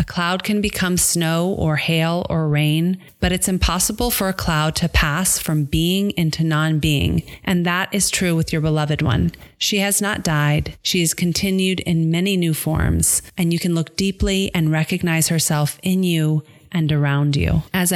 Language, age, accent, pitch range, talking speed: English, 30-49, American, 155-180 Hz, 175 wpm